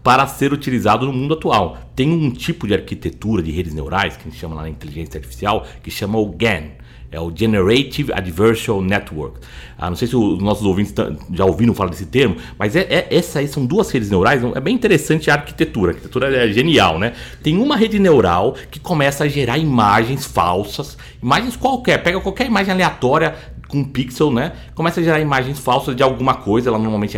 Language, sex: Portuguese, male